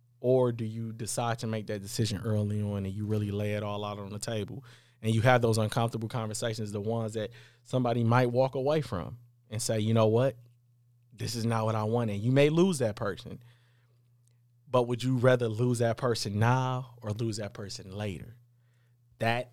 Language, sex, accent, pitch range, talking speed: English, male, American, 105-120 Hz, 200 wpm